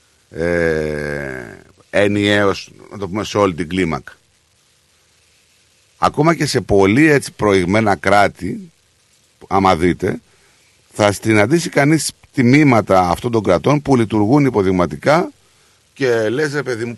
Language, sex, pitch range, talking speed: Greek, male, 95-155 Hz, 115 wpm